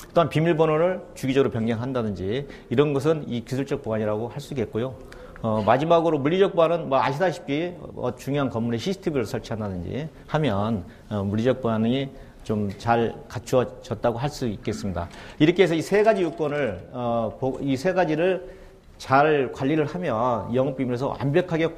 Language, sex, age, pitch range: Korean, male, 40-59, 115-155 Hz